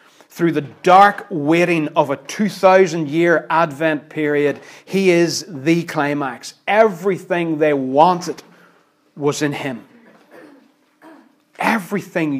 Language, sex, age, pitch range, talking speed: English, male, 30-49, 155-185 Hz, 95 wpm